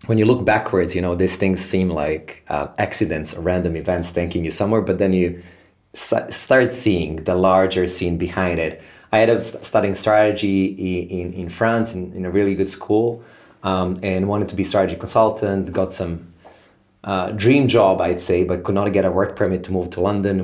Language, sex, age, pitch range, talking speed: English, male, 20-39, 90-100 Hz, 195 wpm